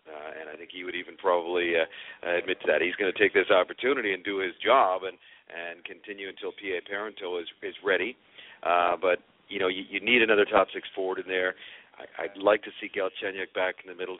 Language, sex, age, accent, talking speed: English, male, 50-69, American, 235 wpm